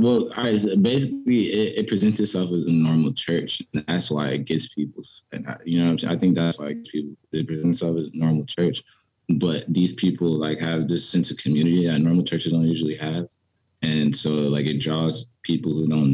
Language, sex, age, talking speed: English, male, 20-39, 215 wpm